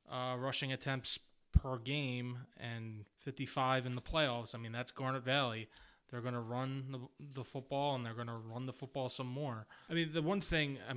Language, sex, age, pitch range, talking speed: English, male, 20-39, 115-135 Hz, 200 wpm